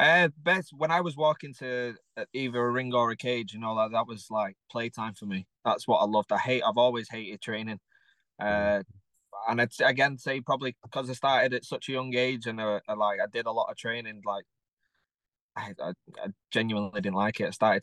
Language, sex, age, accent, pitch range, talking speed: English, male, 20-39, British, 105-125 Hz, 220 wpm